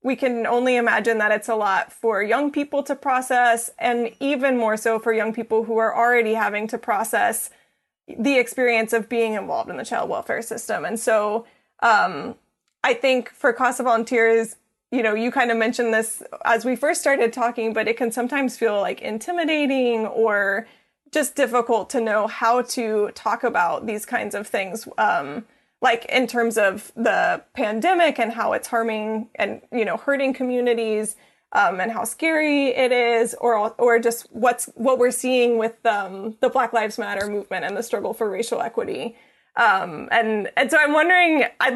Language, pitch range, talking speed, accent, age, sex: English, 225-260 Hz, 180 wpm, American, 20-39, female